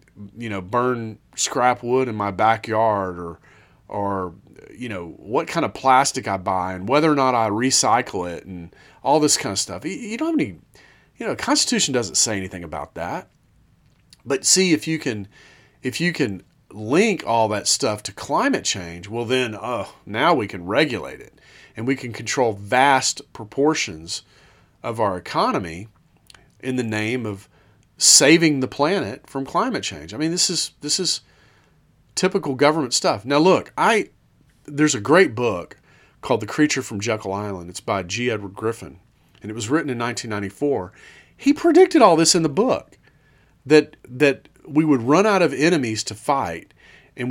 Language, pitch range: English, 100-150 Hz